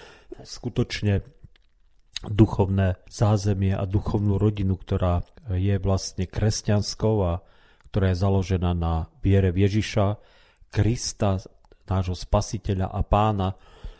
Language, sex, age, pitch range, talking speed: Slovak, male, 40-59, 90-105 Hz, 95 wpm